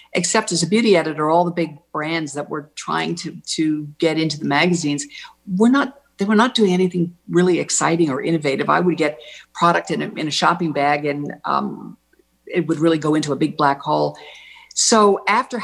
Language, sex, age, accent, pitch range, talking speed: English, female, 50-69, American, 150-190 Hz, 200 wpm